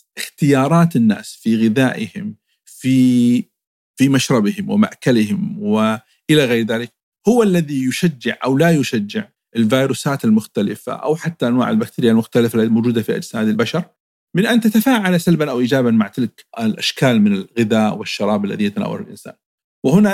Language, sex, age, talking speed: Arabic, male, 50-69, 130 wpm